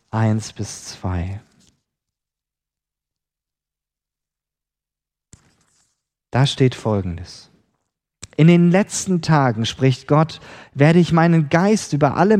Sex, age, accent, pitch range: male, 40-59, German, 115-170 Hz